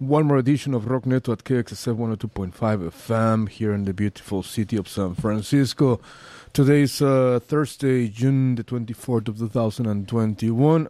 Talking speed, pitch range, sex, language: 150 wpm, 110-130 Hz, male, English